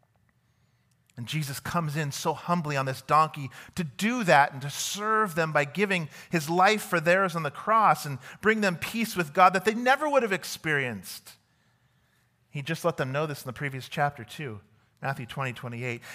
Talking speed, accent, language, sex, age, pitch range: 190 wpm, American, English, male, 40-59, 135-210 Hz